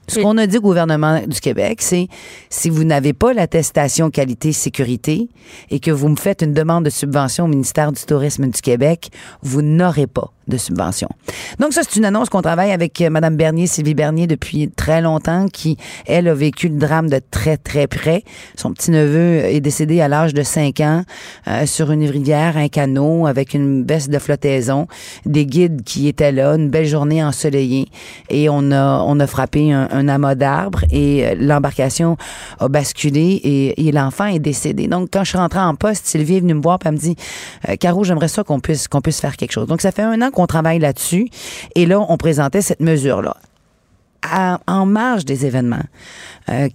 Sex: female